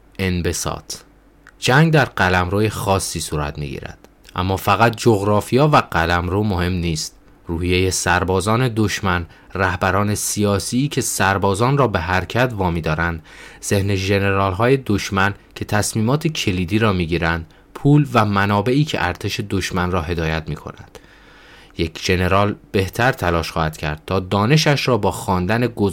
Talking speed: 130 wpm